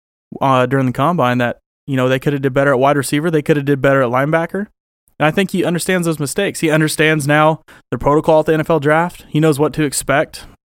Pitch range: 125-155 Hz